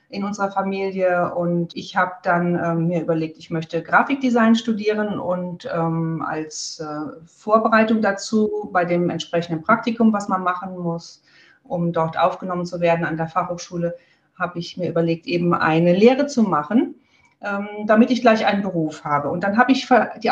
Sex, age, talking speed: female, 40-59, 165 wpm